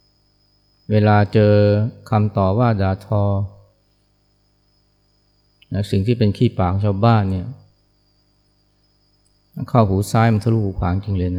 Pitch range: 100-105 Hz